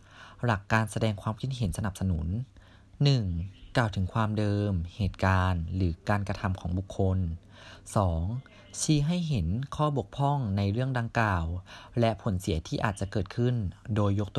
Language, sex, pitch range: Thai, male, 95-120 Hz